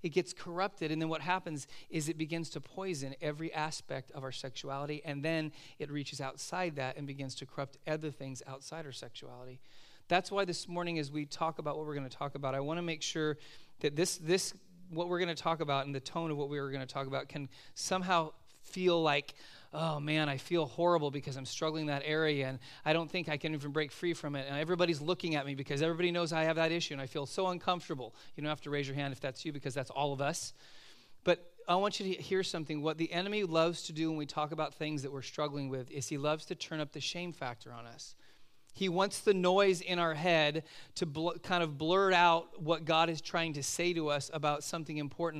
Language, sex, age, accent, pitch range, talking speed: English, male, 40-59, American, 140-170 Hz, 245 wpm